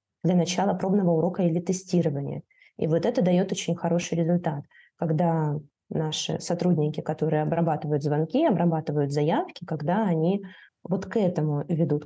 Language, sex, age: Russian, female, 20-39